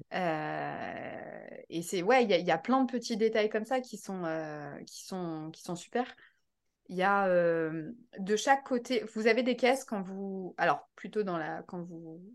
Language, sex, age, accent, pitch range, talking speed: French, female, 20-39, French, 180-235 Hz, 200 wpm